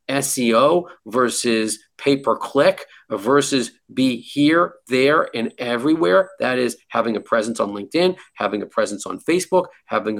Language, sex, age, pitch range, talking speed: English, male, 50-69, 120-160 Hz, 130 wpm